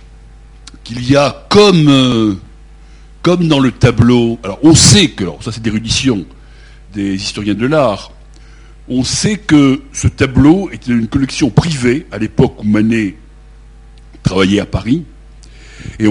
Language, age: French, 60-79